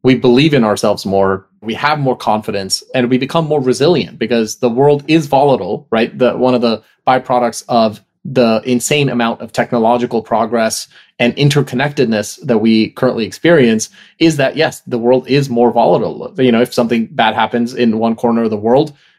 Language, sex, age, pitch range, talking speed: English, male, 30-49, 110-135 Hz, 180 wpm